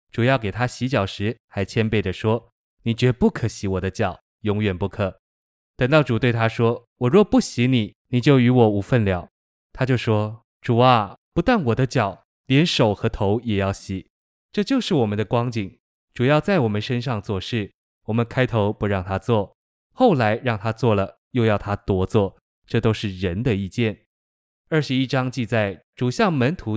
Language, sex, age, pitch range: Chinese, male, 20-39, 105-130 Hz